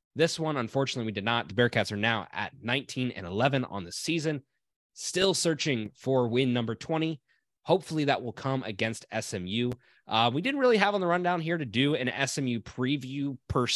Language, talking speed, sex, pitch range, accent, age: English, 190 wpm, male, 110-160 Hz, American, 20-39